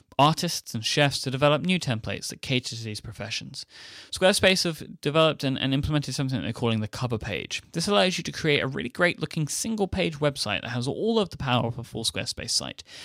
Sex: male